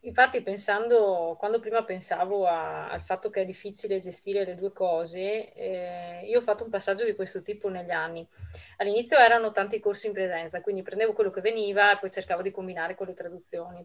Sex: female